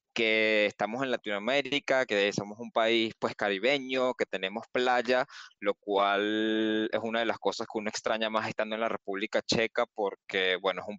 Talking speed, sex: 180 wpm, male